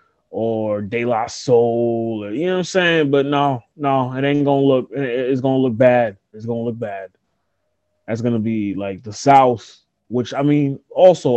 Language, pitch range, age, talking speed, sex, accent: English, 110-135 Hz, 20-39, 180 wpm, male, American